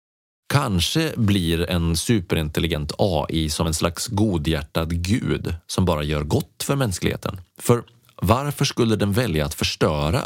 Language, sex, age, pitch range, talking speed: Swedish, male, 30-49, 80-110 Hz, 135 wpm